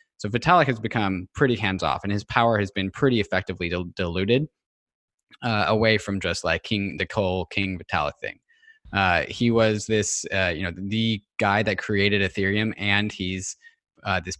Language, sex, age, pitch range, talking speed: English, male, 20-39, 100-120 Hz, 175 wpm